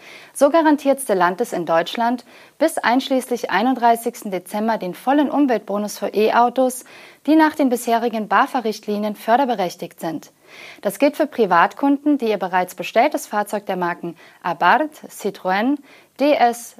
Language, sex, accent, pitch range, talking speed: German, female, German, 205-275 Hz, 125 wpm